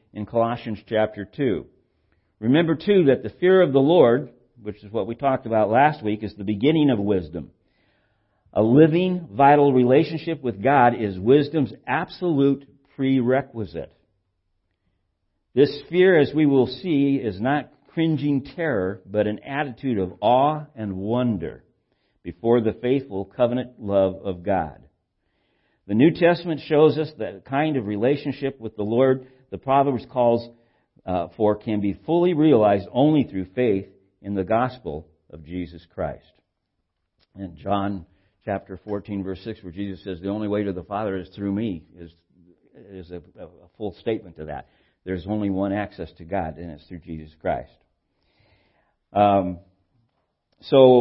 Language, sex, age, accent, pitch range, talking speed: English, male, 50-69, American, 95-135 Hz, 150 wpm